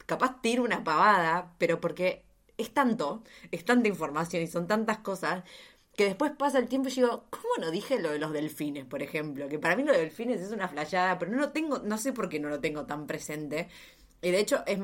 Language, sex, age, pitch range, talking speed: Spanish, female, 20-39, 170-240 Hz, 225 wpm